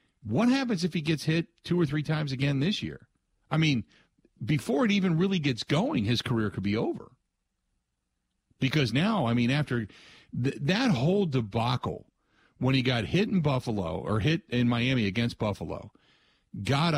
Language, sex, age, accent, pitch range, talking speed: English, male, 50-69, American, 105-150 Hz, 170 wpm